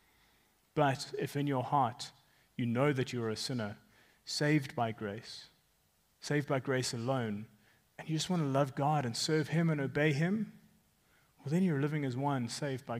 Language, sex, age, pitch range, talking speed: English, male, 30-49, 120-155 Hz, 185 wpm